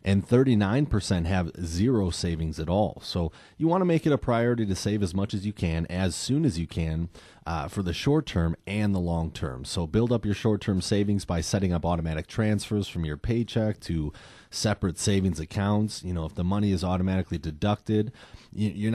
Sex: male